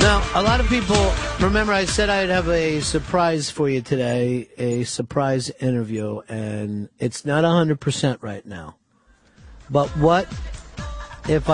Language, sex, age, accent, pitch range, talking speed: English, male, 50-69, American, 105-140 Hz, 140 wpm